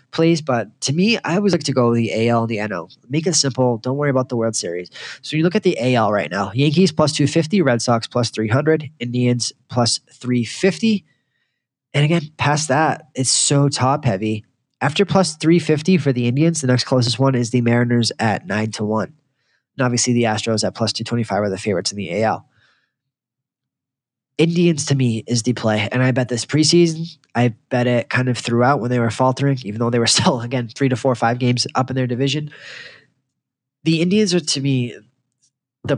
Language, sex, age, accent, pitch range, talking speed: English, male, 20-39, American, 120-145 Hz, 200 wpm